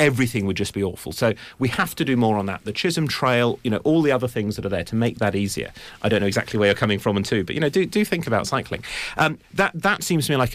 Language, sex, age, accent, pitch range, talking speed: English, male, 40-59, British, 100-130 Hz, 305 wpm